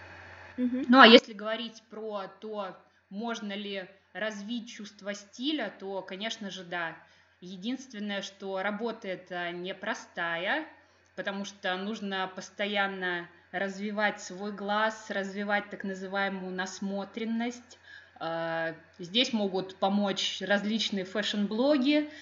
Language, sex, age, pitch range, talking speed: Russian, female, 20-39, 185-215 Hz, 95 wpm